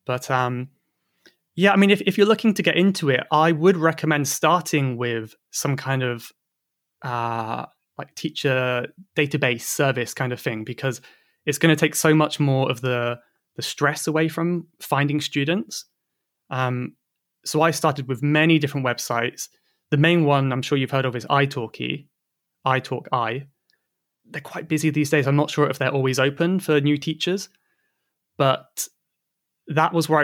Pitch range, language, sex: 130-160 Hz, English, male